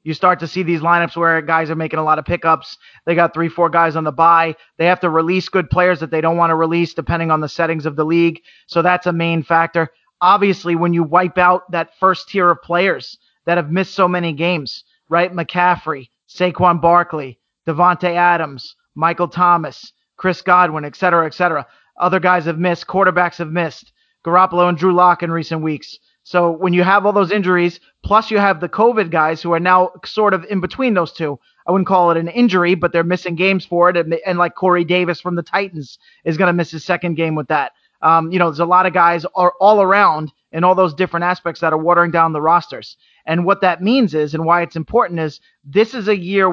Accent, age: American, 30-49